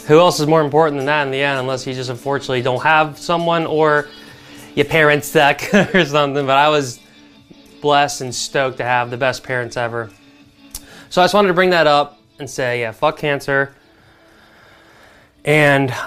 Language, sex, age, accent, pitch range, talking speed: English, male, 20-39, American, 125-165 Hz, 185 wpm